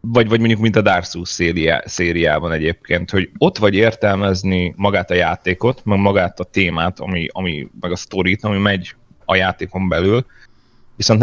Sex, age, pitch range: male, 30-49, 90-100 Hz